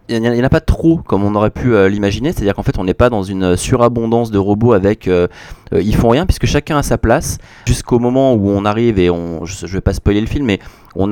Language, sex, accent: French, male, French